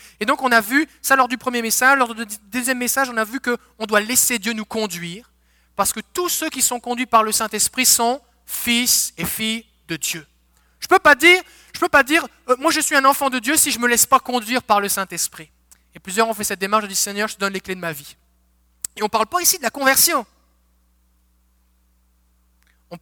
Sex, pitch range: male, 170-250 Hz